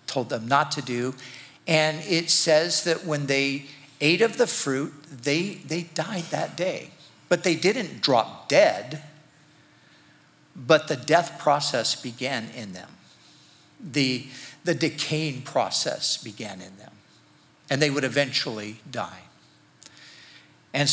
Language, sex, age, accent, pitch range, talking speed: English, male, 50-69, American, 130-160 Hz, 130 wpm